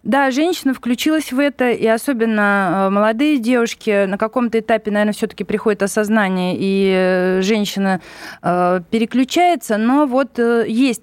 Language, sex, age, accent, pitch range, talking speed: Russian, female, 20-39, native, 205-260 Hz, 120 wpm